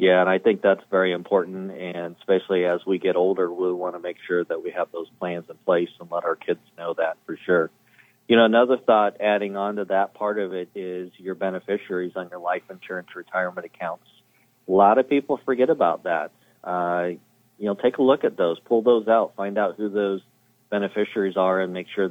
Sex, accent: male, American